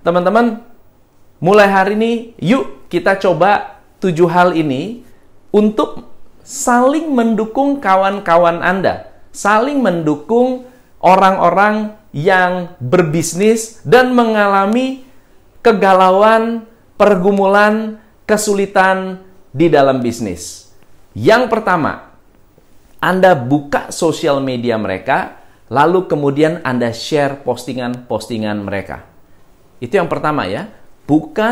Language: Indonesian